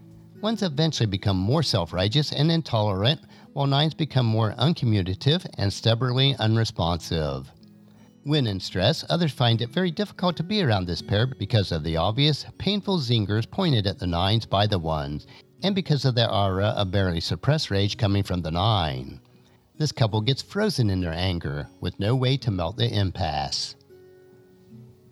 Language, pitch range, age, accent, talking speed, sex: English, 95-150 Hz, 50-69, American, 160 wpm, male